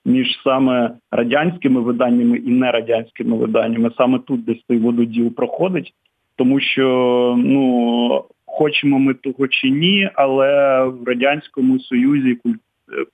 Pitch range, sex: 120-155 Hz, male